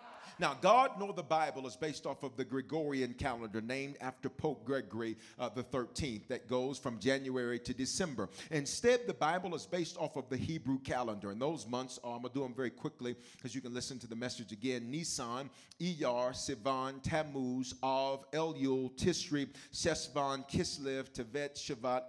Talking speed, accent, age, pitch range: 175 wpm, American, 40-59, 130-205 Hz